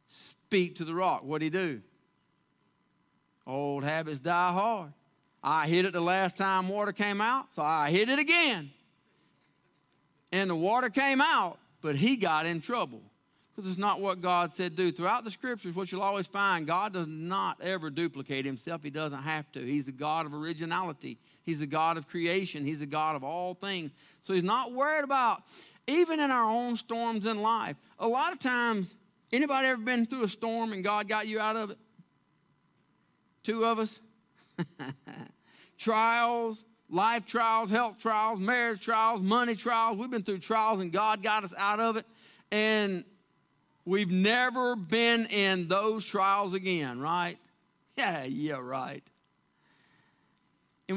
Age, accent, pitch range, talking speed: 40-59, American, 170-225 Hz, 165 wpm